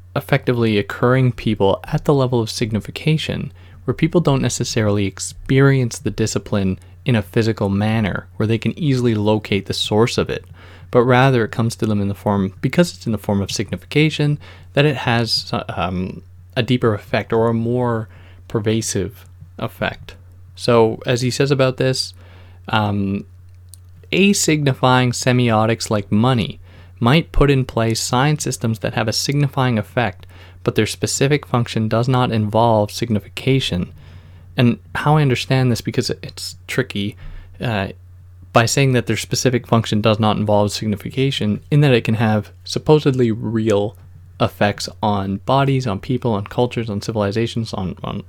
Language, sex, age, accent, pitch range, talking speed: English, male, 20-39, American, 95-125 Hz, 155 wpm